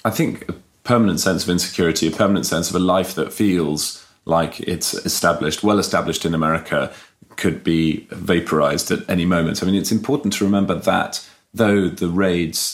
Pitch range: 85-100 Hz